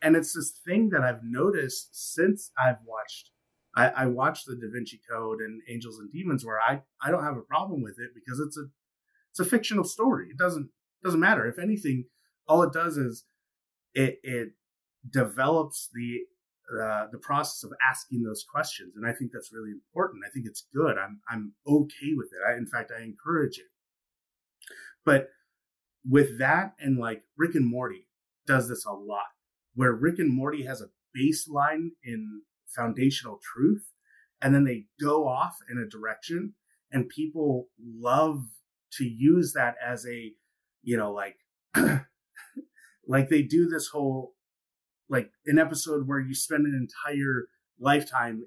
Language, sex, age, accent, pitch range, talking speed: English, male, 30-49, American, 120-160 Hz, 165 wpm